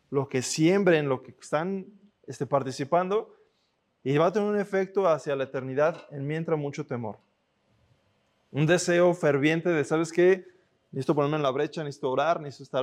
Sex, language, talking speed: male, Spanish, 170 wpm